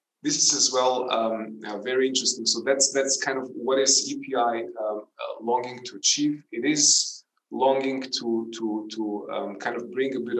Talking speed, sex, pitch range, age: 185 wpm, male, 110-150 Hz, 30-49